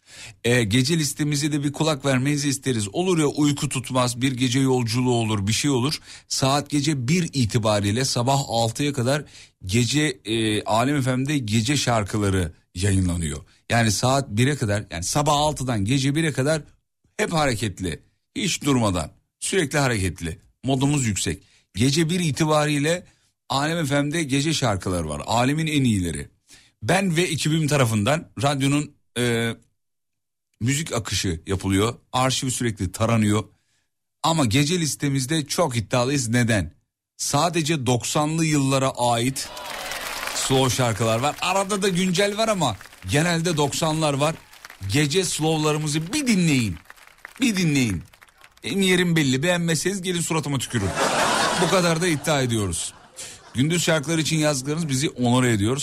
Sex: male